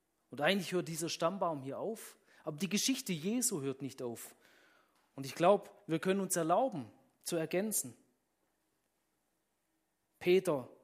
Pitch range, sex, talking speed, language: 135-180 Hz, male, 135 wpm, German